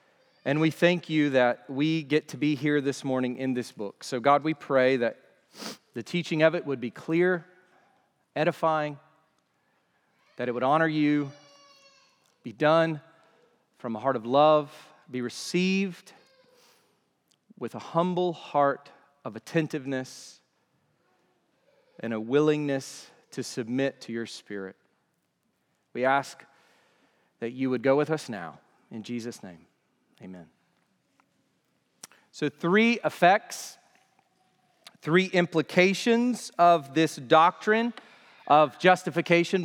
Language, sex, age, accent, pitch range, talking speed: English, male, 40-59, American, 140-185 Hz, 120 wpm